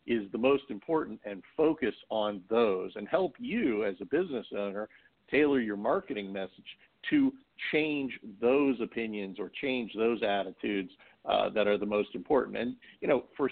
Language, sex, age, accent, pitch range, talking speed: English, male, 50-69, American, 100-120 Hz, 165 wpm